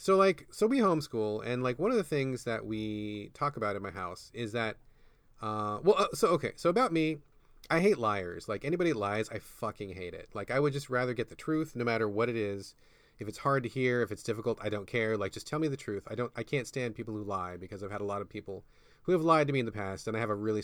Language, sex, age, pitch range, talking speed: English, male, 30-49, 105-150 Hz, 280 wpm